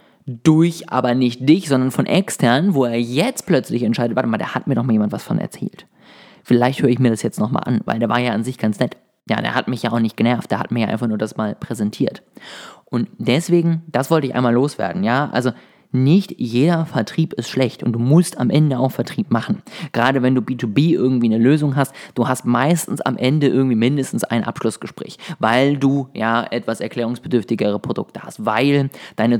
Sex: male